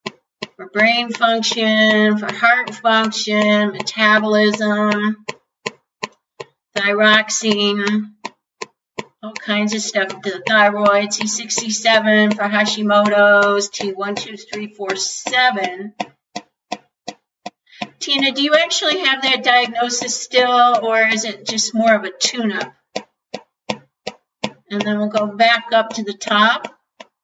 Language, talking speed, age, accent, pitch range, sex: English, 95 wpm, 50-69, American, 210-230 Hz, female